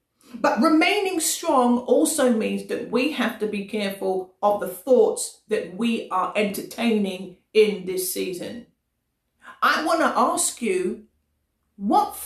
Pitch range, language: 215-290 Hz, English